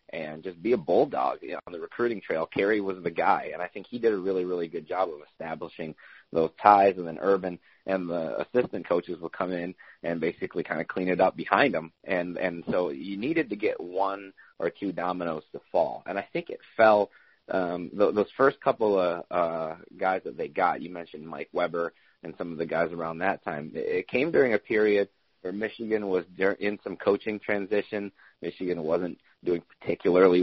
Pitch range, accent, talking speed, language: 85-105 Hz, American, 200 wpm, English